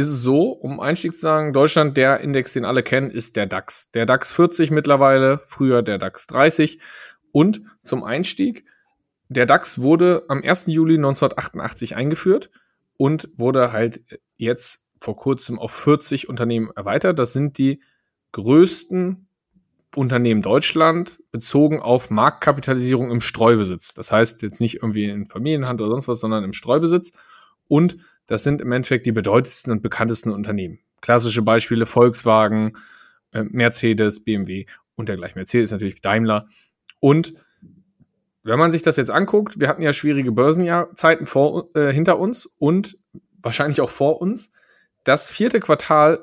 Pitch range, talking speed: 115-160 Hz, 145 wpm